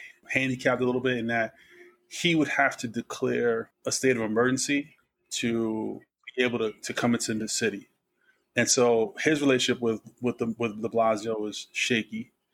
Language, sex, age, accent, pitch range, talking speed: English, male, 20-39, American, 115-130 Hz, 170 wpm